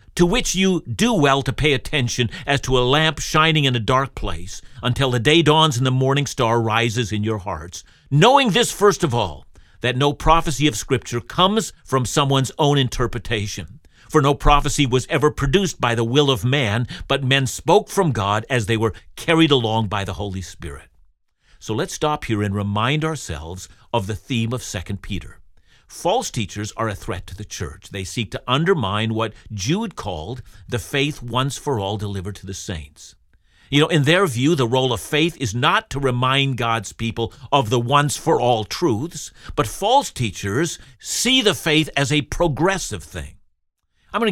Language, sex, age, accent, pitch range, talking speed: English, male, 50-69, American, 105-150 Hz, 190 wpm